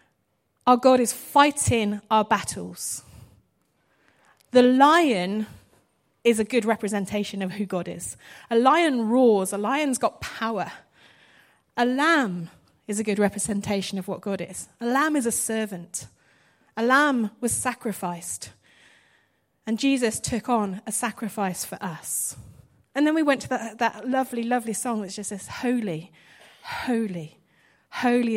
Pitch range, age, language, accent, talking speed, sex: 195-245 Hz, 30-49, English, British, 140 wpm, female